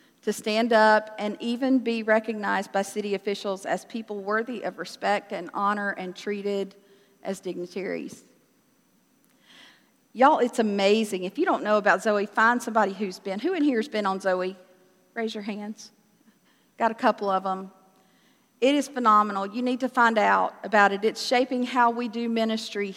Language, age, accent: English, 50-69, American